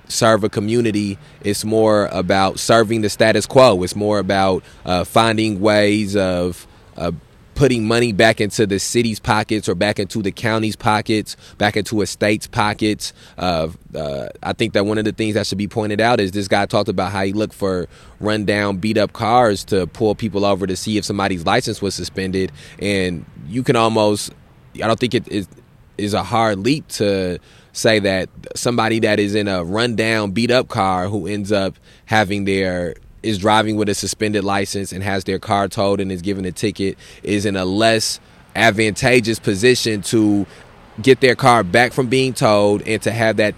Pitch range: 100-115 Hz